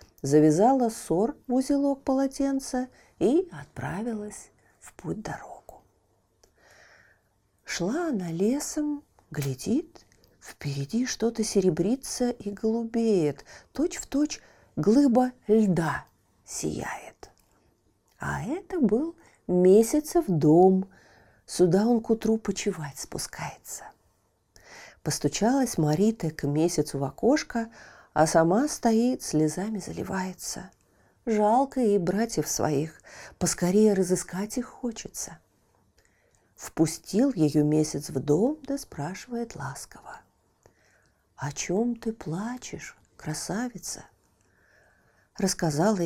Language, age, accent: Russian, 40-59, native